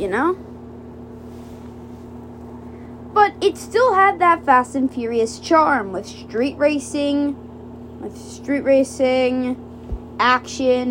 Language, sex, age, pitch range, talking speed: English, female, 20-39, 225-310 Hz, 100 wpm